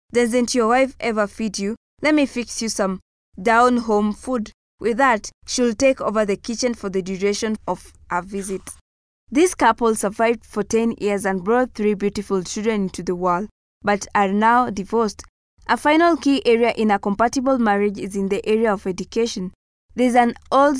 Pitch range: 200-235 Hz